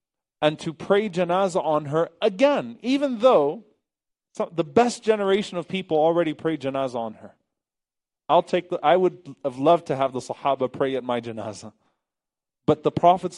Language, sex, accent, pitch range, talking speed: English, male, American, 120-165 Hz, 170 wpm